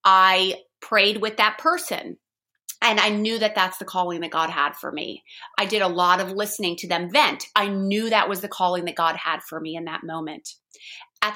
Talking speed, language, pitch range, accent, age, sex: 215 wpm, English, 190-235 Hz, American, 30-49, female